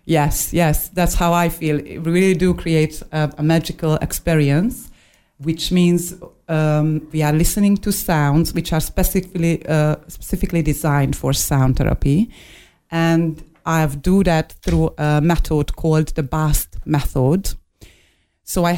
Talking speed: 140 wpm